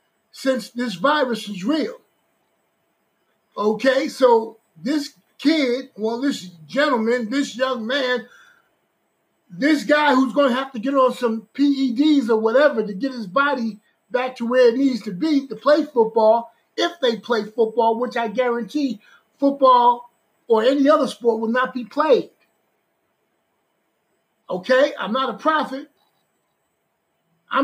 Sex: male